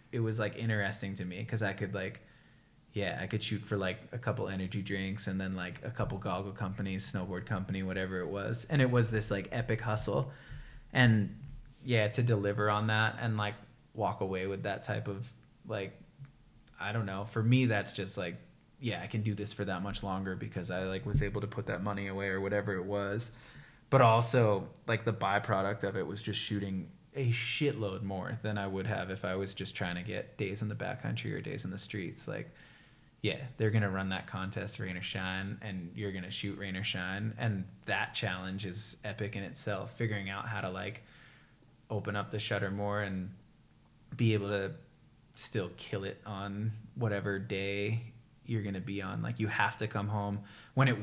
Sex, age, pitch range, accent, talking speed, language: male, 20-39, 100-120 Hz, American, 205 wpm, English